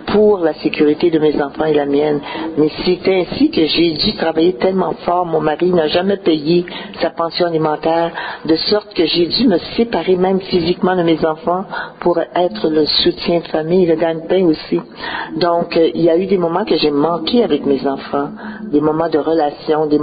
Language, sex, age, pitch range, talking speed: French, male, 60-79, 150-185 Hz, 200 wpm